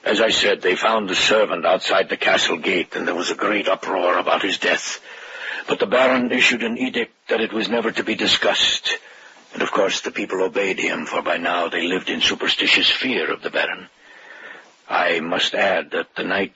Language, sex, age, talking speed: English, male, 60-79, 205 wpm